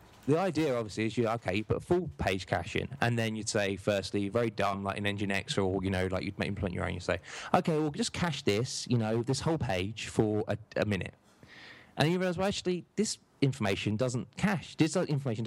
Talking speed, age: 230 wpm, 20-39